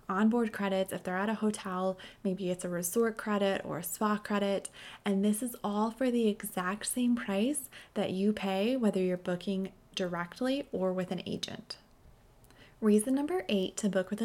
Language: English